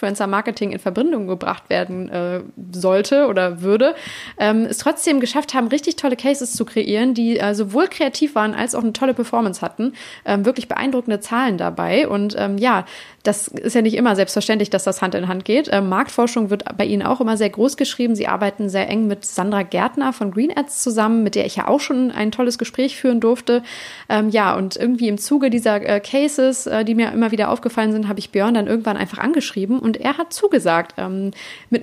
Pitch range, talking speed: 205-260 Hz, 210 wpm